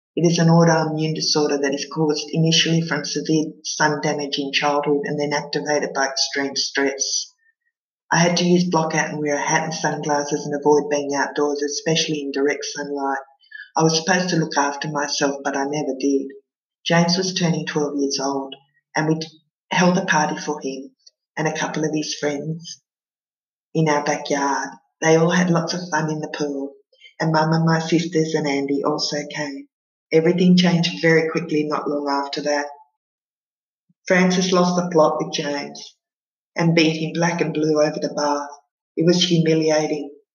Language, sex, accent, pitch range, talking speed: English, female, Australian, 145-170 Hz, 175 wpm